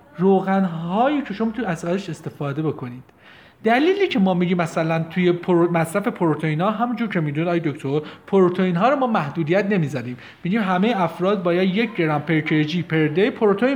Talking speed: 155 wpm